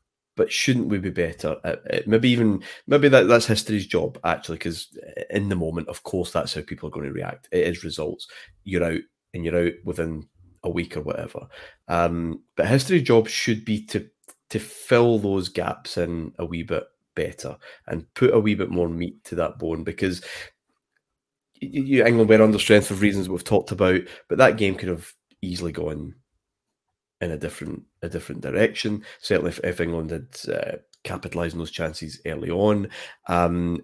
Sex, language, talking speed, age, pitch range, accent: male, English, 180 wpm, 30-49, 85-110 Hz, British